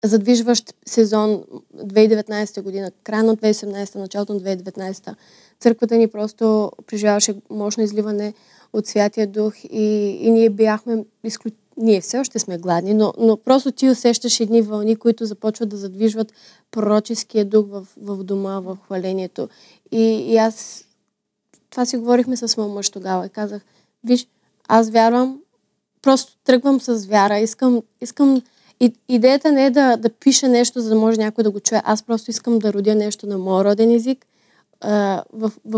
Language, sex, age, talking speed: Bulgarian, female, 20-39, 155 wpm